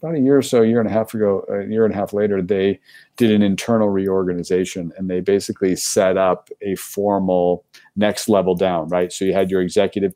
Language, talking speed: English, 225 wpm